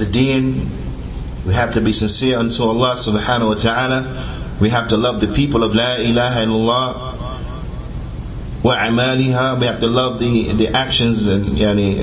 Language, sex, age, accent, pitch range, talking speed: English, male, 30-49, American, 100-135 Hz, 155 wpm